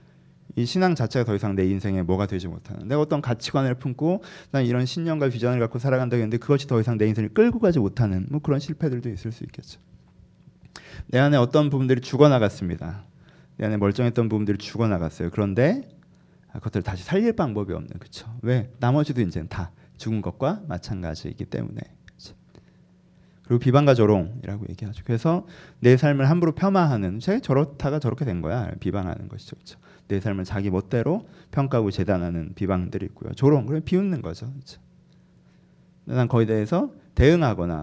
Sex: male